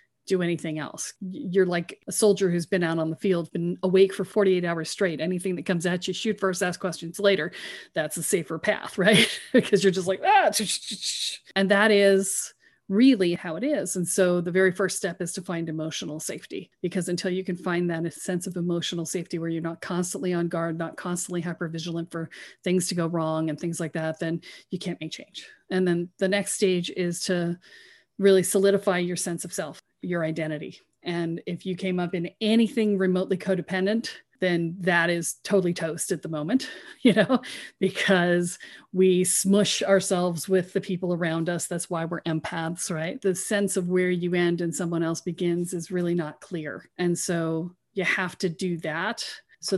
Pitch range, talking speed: 170-195 Hz, 195 wpm